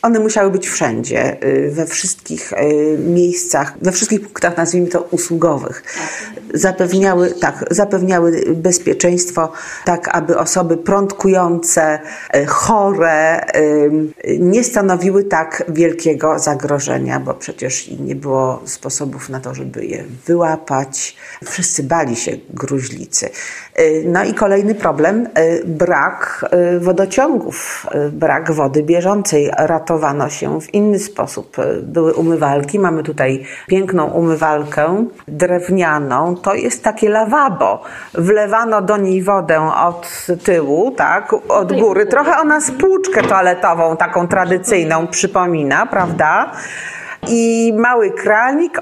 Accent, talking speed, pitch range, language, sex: native, 105 wpm, 155-205 Hz, Polish, female